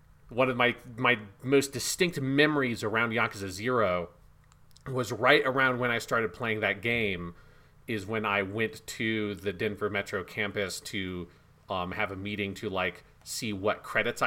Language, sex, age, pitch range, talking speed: English, male, 30-49, 100-130 Hz, 160 wpm